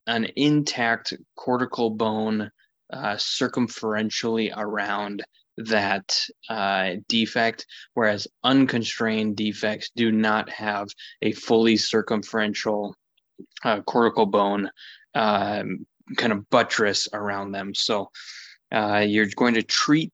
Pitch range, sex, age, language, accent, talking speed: 105-120 Hz, male, 20-39, English, American, 100 wpm